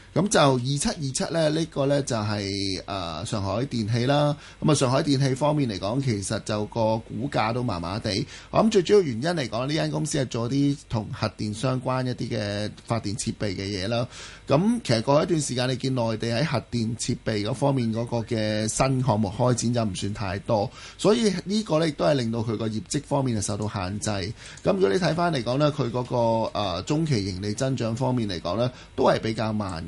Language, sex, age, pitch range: Chinese, male, 20-39, 110-140 Hz